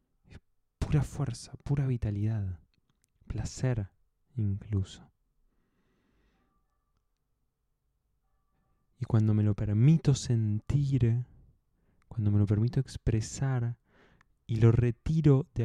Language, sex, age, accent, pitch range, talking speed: Spanish, male, 20-39, Argentinian, 105-130 Hz, 75 wpm